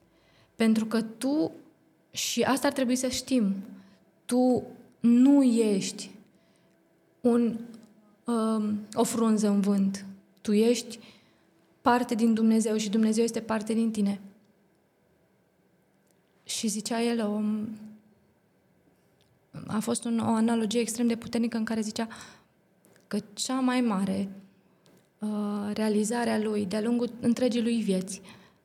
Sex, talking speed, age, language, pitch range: female, 110 wpm, 20-39, Romanian, 205-230 Hz